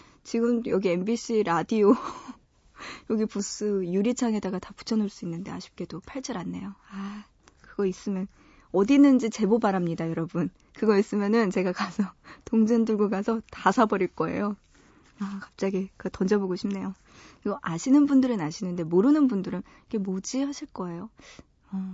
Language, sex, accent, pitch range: Korean, female, native, 185-240 Hz